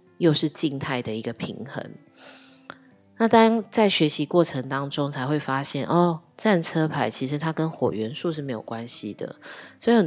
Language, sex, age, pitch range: Chinese, female, 20-39, 125-165 Hz